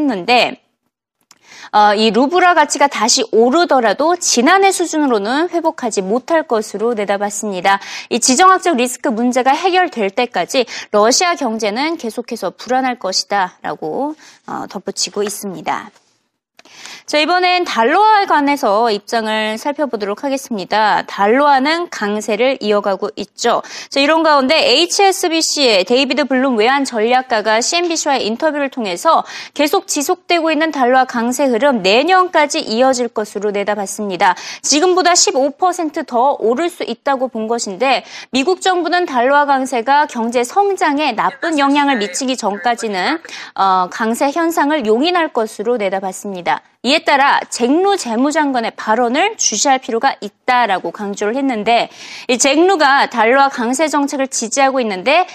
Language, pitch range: Korean, 215-310 Hz